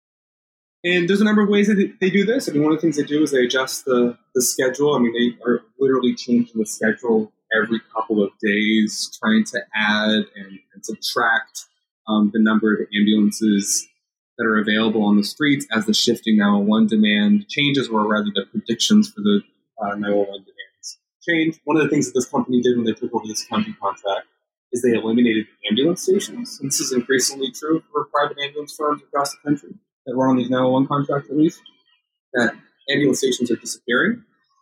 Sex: male